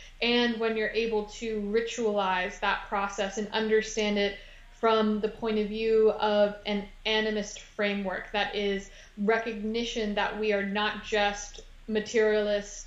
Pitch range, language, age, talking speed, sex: 205-225 Hz, English, 20-39, 135 wpm, female